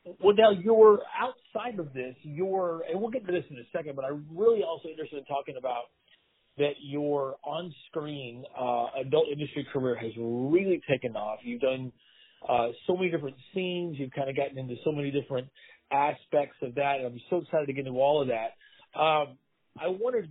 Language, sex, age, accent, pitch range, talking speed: English, male, 40-59, American, 130-170 Hz, 195 wpm